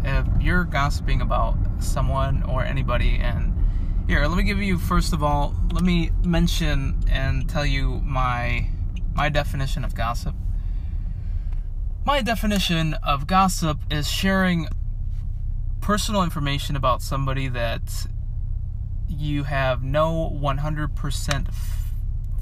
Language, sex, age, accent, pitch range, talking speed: English, male, 20-39, American, 85-125 Hz, 110 wpm